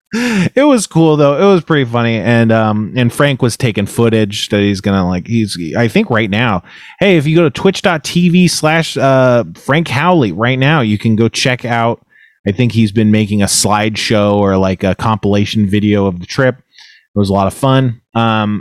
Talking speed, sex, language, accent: 205 wpm, male, English, American